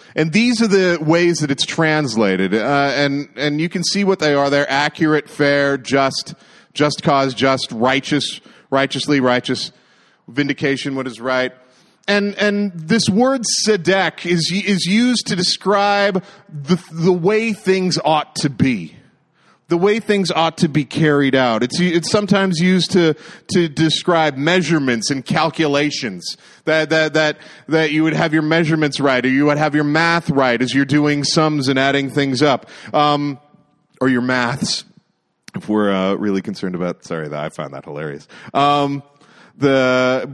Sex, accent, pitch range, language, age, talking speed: male, American, 140-180 Hz, English, 40-59, 160 wpm